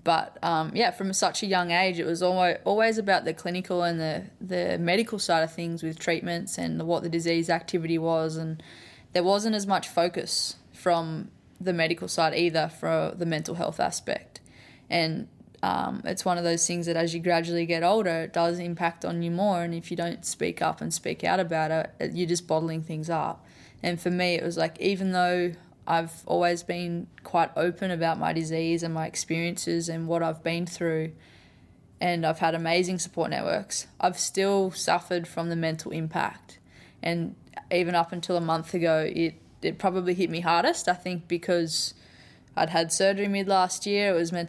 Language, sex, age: English, female, 10-29